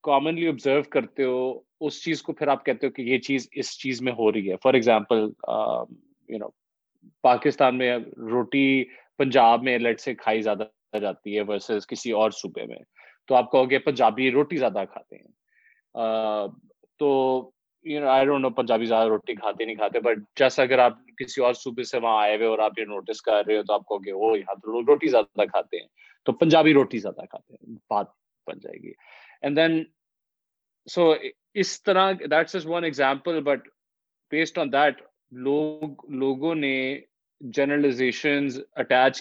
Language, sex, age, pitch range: Urdu, male, 30-49, 110-145 Hz